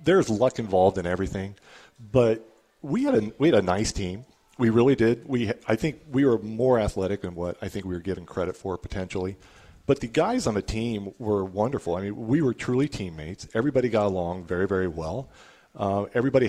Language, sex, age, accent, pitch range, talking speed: English, male, 40-59, American, 95-115 Hz, 205 wpm